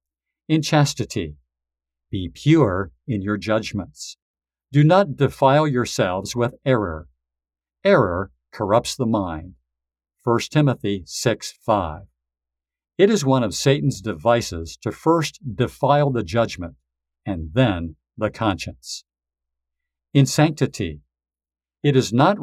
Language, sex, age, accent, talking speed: English, male, 50-69, American, 110 wpm